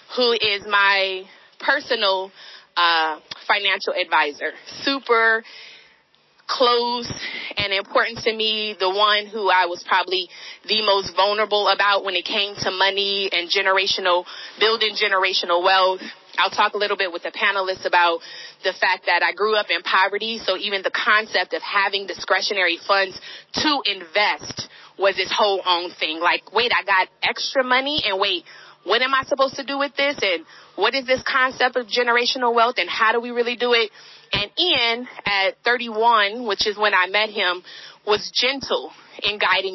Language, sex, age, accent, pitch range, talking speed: English, female, 20-39, American, 190-230 Hz, 165 wpm